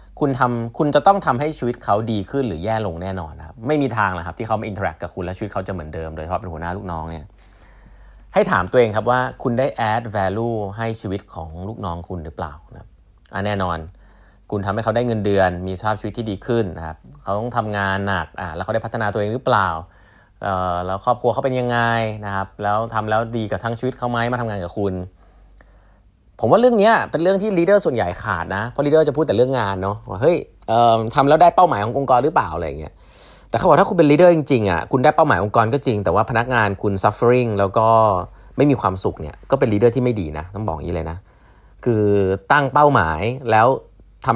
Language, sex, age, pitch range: Thai, male, 20-39, 95-120 Hz